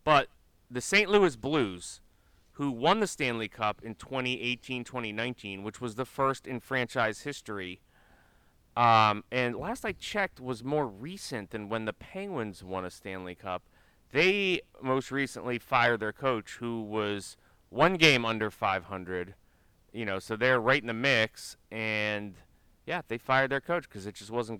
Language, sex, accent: English, male, American